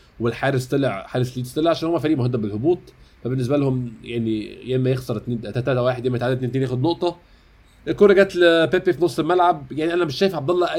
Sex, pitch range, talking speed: male, 125-170 Hz, 205 wpm